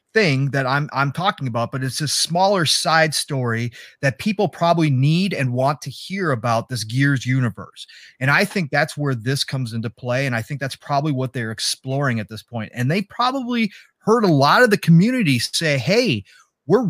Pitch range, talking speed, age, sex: 130-170 Hz, 200 wpm, 30-49, male